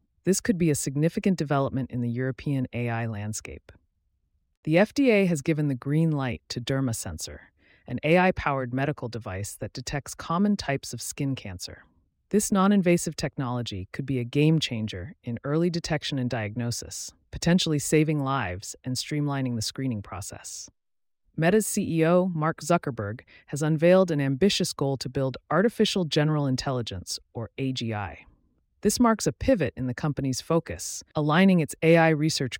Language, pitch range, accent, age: English, 115-160 Hz, American, 30-49